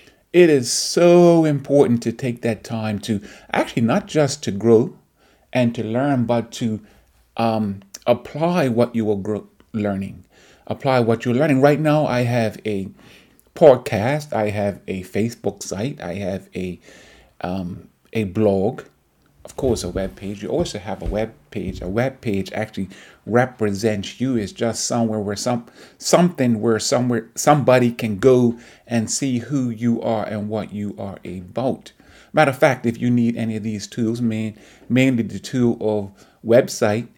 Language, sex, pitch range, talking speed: English, male, 105-125 Hz, 165 wpm